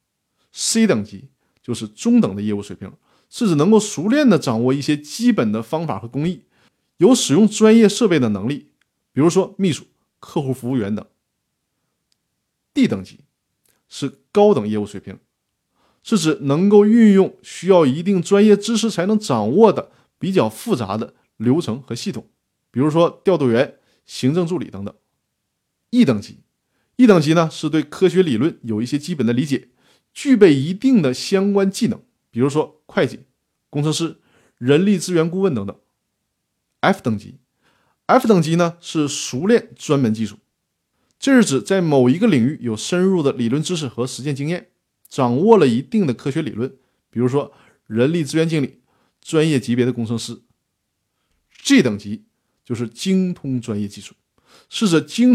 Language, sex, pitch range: Chinese, male, 125-195 Hz